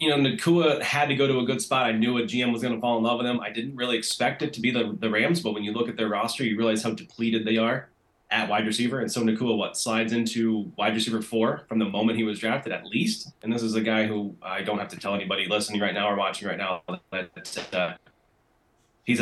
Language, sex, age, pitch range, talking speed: English, male, 20-39, 105-115 Hz, 270 wpm